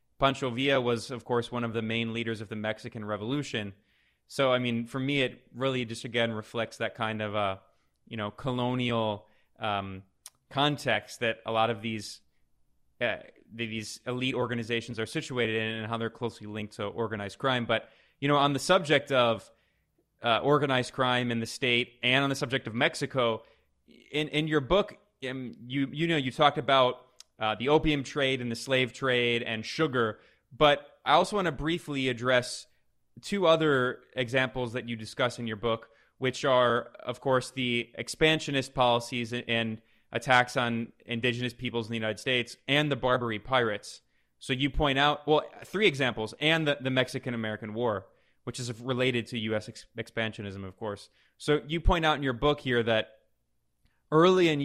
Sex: male